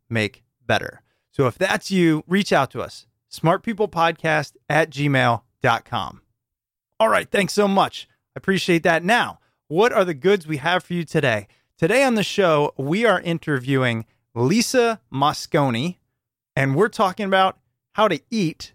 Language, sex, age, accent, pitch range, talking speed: English, male, 30-49, American, 130-180 Hz, 150 wpm